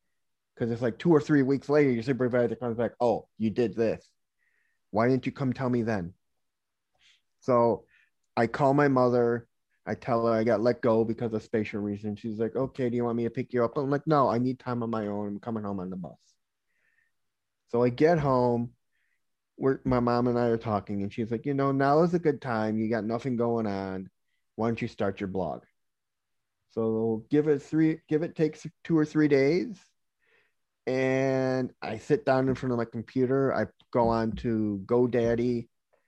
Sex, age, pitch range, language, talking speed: male, 20-39, 110-130 Hz, English, 200 wpm